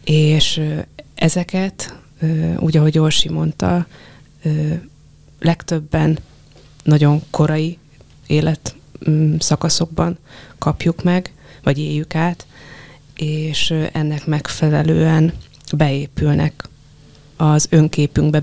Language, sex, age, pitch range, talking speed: Hungarian, female, 20-39, 145-160 Hz, 70 wpm